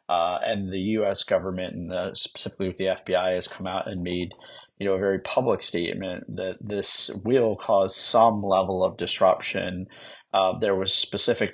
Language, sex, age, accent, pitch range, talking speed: English, male, 30-49, American, 95-110 Hz, 175 wpm